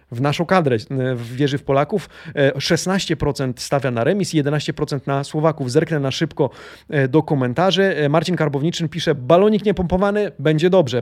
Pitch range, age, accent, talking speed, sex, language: 135-165 Hz, 30-49, native, 140 wpm, male, Polish